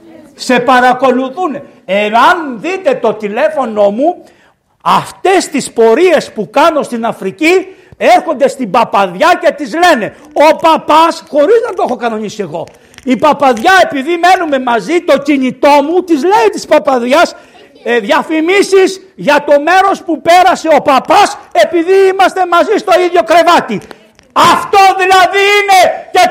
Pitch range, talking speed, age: 230-345 Hz, 135 wpm, 50-69